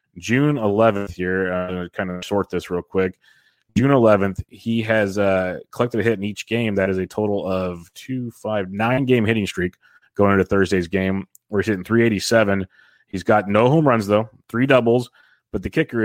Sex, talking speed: male, 200 wpm